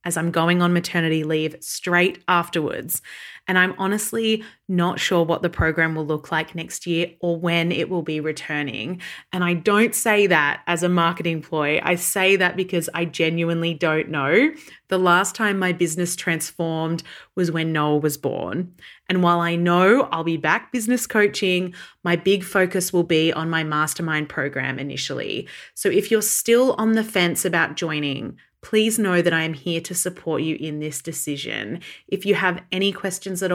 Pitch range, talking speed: 160-185 Hz, 180 wpm